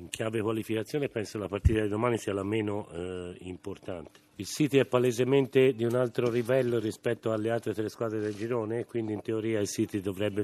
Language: Italian